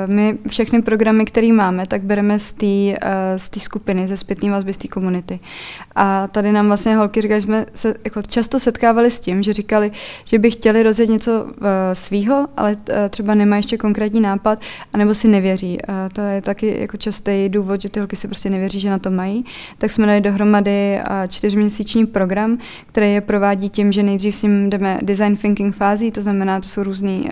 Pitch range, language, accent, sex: 195-210 Hz, Czech, native, female